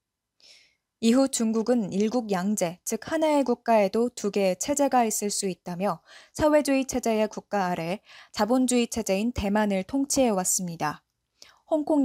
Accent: native